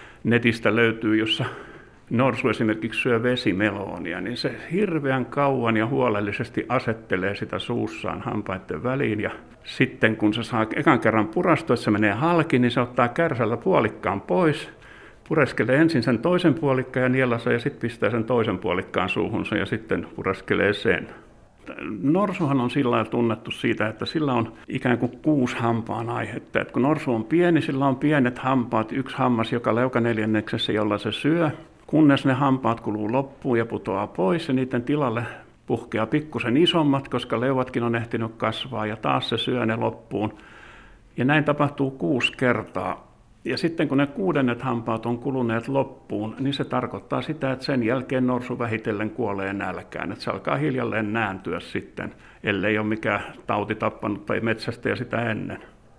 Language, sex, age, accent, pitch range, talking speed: Finnish, male, 60-79, native, 115-135 Hz, 160 wpm